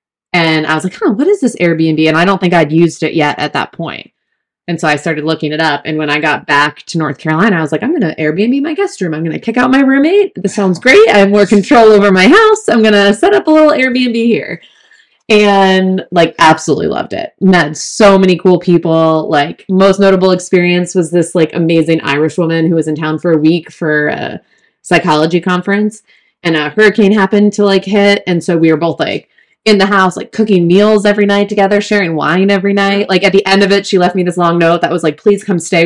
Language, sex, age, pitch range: English, female, 20-39, 160-205 Hz